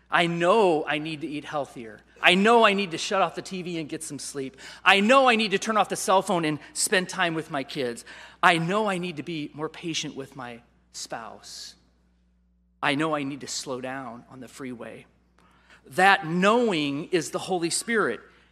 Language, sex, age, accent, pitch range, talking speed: English, male, 40-59, American, 135-190 Hz, 205 wpm